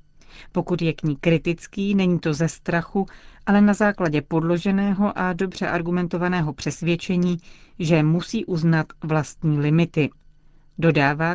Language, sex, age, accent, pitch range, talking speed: Czech, female, 40-59, native, 160-190 Hz, 120 wpm